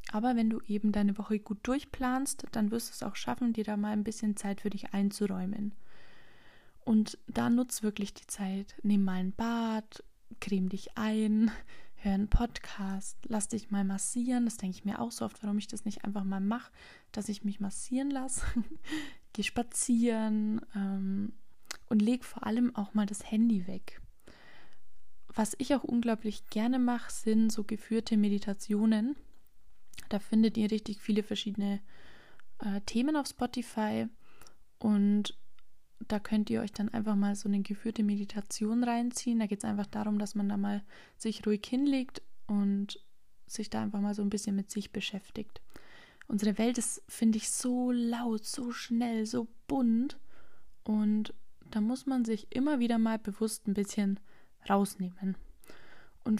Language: German